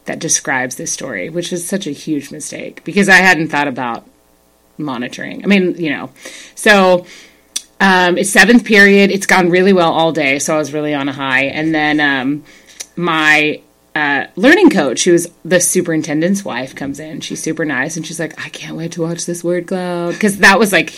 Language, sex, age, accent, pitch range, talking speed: English, female, 30-49, American, 150-195 Hz, 200 wpm